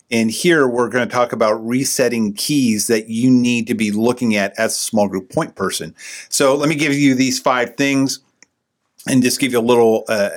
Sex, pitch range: male, 115-135 Hz